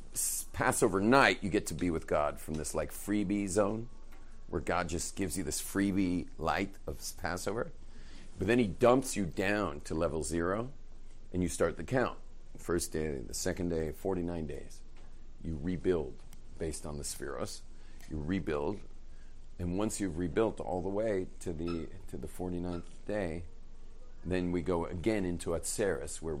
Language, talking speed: English, 165 wpm